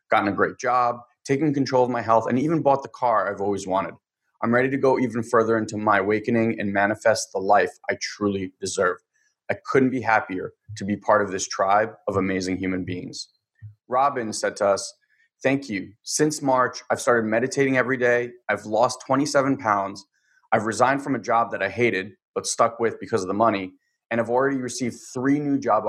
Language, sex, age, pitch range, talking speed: English, male, 20-39, 105-130 Hz, 200 wpm